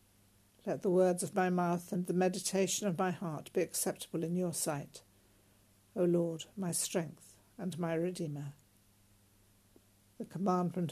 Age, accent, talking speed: 60-79, British, 145 wpm